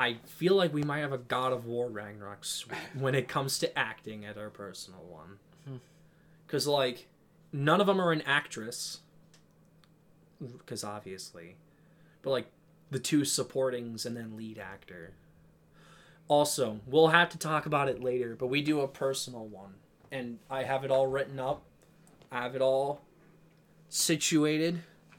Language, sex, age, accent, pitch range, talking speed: English, male, 20-39, American, 125-160 Hz, 155 wpm